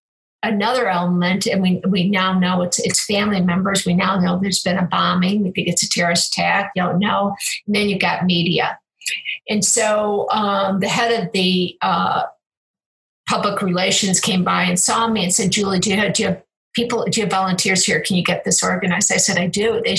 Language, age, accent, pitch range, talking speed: English, 50-69, American, 185-215 Hz, 205 wpm